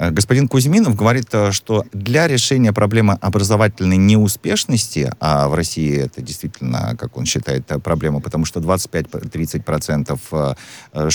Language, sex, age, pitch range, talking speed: Russian, male, 40-59, 80-115 Hz, 115 wpm